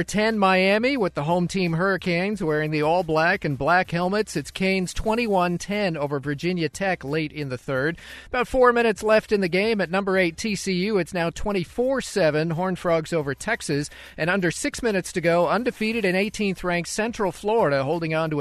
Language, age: English, 40-59